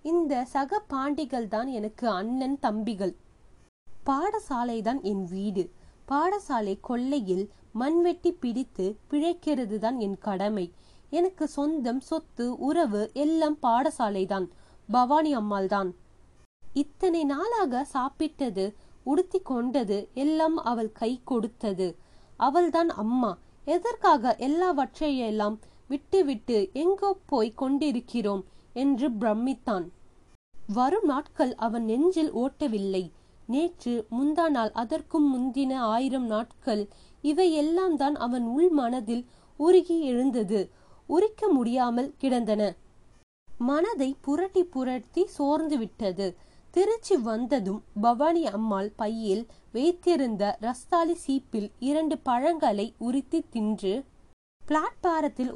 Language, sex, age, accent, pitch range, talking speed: Tamil, female, 20-39, native, 220-310 Hz, 70 wpm